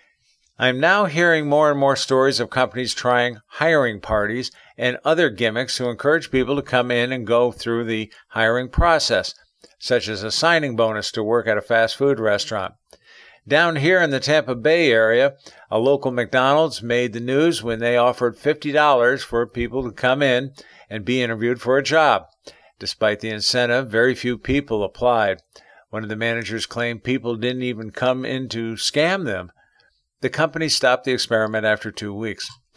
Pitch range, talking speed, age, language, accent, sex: 115-140 Hz, 175 wpm, 50-69, English, American, male